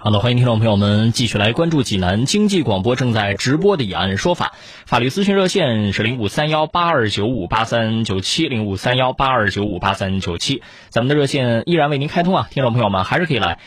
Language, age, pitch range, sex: Chinese, 20-39, 100-140 Hz, male